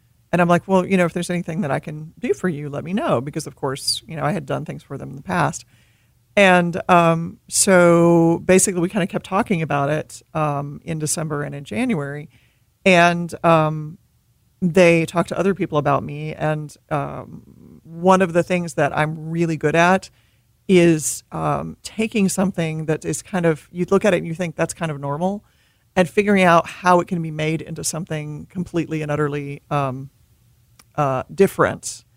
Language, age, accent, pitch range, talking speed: English, 40-59, American, 145-180 Hz, 195 wpm